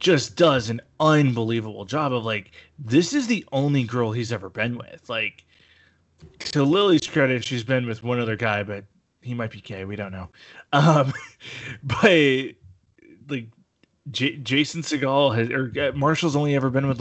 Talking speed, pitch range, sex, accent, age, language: 155 wpm, 115-145 Hz, male, American, 20-39, English